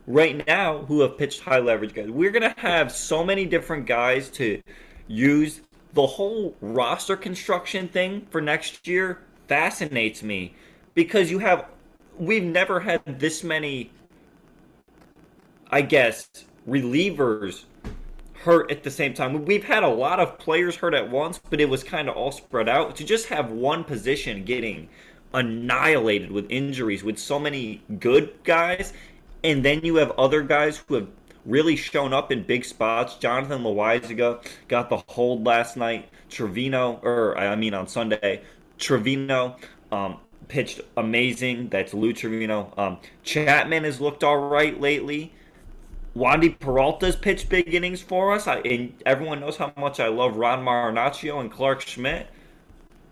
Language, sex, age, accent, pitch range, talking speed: English, male, 20-39, American, 120-165 Hz, 150 wpm